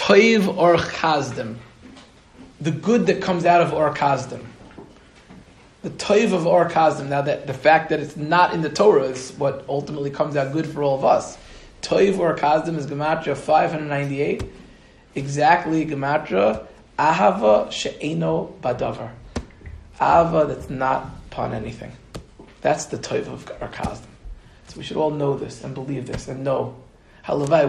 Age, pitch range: 30-49, 140-165 Hz